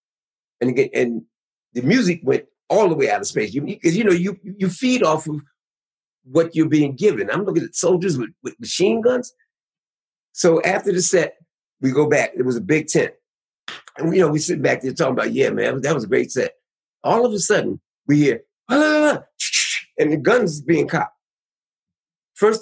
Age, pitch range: 50-69, 150-245 Hz